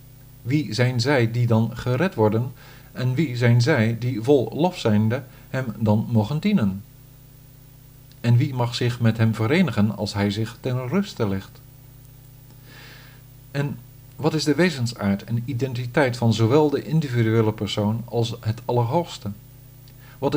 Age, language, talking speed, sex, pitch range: 50-69, Dutch, 140 wpm, male, 115-135 Hz